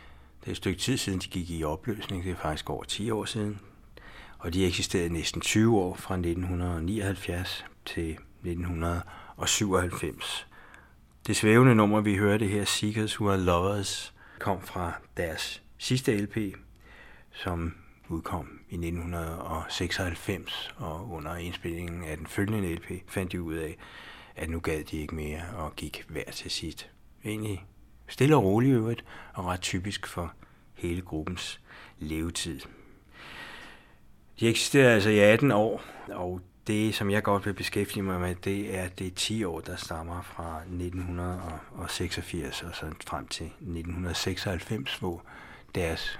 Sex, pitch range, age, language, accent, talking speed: male, 85-100 Hz, 60-79, Danish, native, 145 wpm